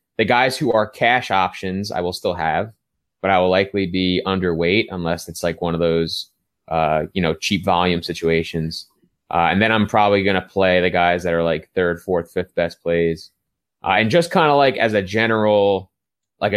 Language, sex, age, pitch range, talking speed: English, male, 20-39, 85-105 Hz, 205 wpm